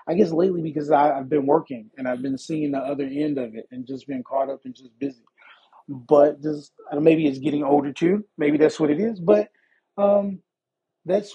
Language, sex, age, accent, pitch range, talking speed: English, male, 20-39, American, 135-160 Hz, 225 wpm